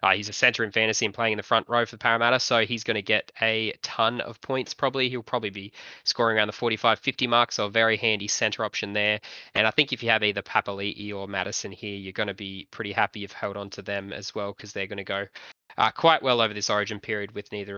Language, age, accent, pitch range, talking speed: English, 20-39, Australian, 105-135 Hz, 265 wpm